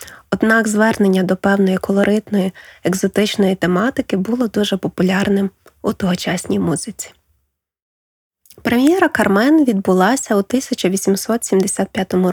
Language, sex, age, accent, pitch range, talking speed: Ukrainian, female, 20-39, native, 190-235 Hz, 90 wpm